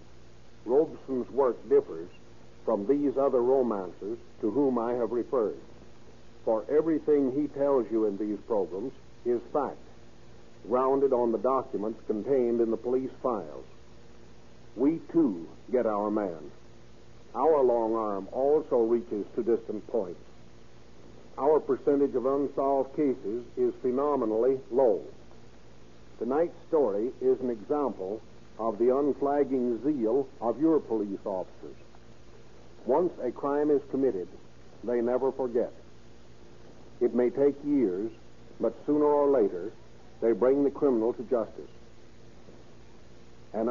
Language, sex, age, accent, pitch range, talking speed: English, male, 60-79, American, 120-150 Hz, 120 wpm